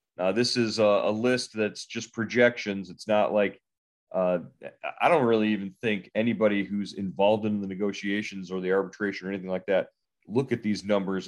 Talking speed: 185 wpm